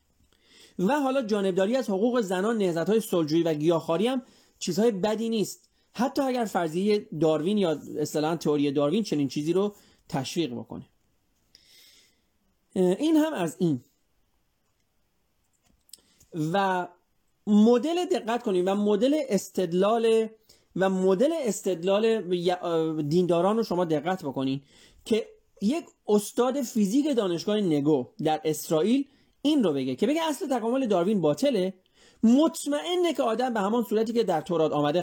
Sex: male